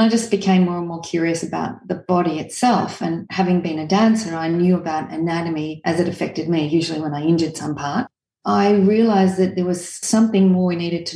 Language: English